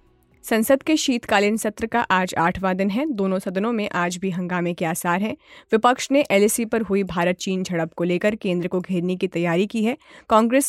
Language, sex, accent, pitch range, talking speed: Hindi, female, native, 180-225 Hz, 200 wpm